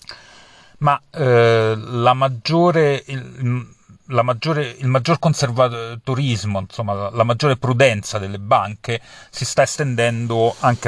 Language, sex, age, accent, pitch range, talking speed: Italian, male, 40-59, native, 105-125 Hz, 115 wpm